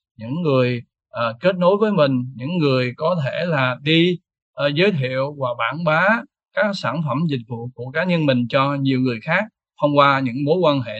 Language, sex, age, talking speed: Vietnamese, male, 20-39, 205 wpm